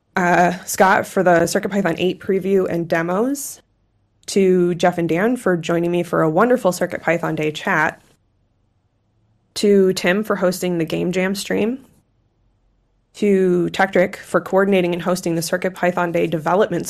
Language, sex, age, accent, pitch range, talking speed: English, female, 20-39, American, 160-195 Hz, 140 wpm